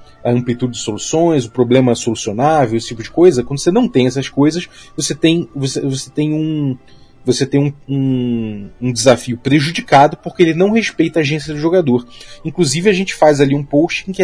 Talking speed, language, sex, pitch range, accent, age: 200 wpm, Portuguese, male, 120-155 Hz, Brazilian, 30-49